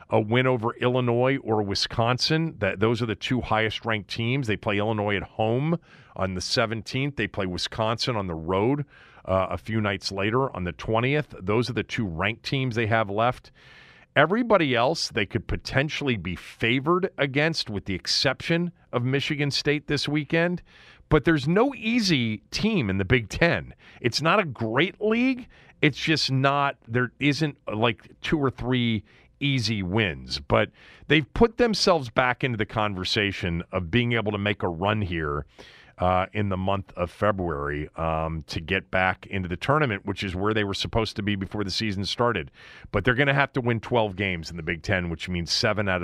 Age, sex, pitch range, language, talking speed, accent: 40-59, male, 90-130 Hz, English, 190 wpm, American